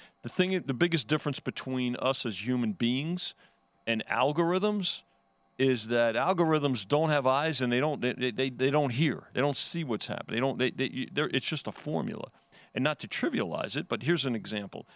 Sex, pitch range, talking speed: male, 100-135 Hz, 190 wpm